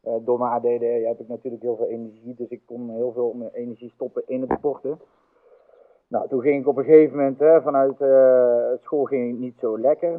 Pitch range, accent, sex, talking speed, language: 120-150 Hz, Dutch, male, 205 wpm, Dutch